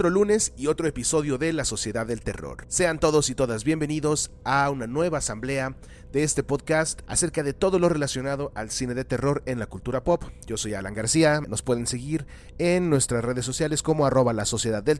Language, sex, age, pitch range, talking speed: English, male, 30-49, 125-165 Hz, 200 wpm